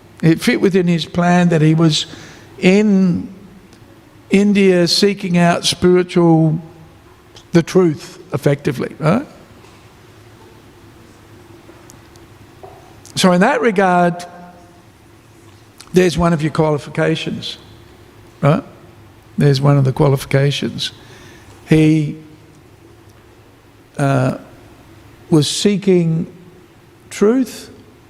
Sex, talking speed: male, 80 wpm